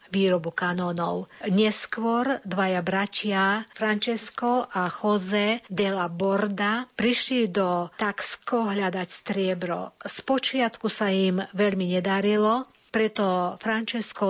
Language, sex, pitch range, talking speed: Slovak, female, 180-210 Hz, 95 wpm